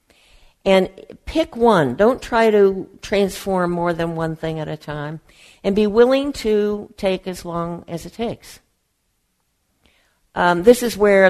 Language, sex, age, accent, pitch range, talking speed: English, female, 60-79, American, 150-180 Hz, 150 wpm